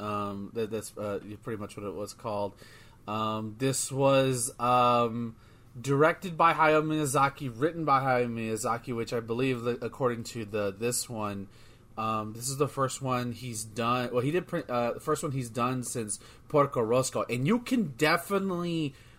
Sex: male